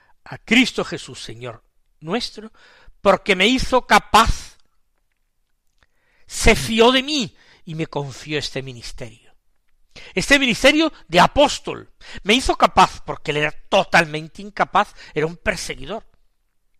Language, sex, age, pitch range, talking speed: Spanish, male, 50-69, 140-230 Hz, 120 wpm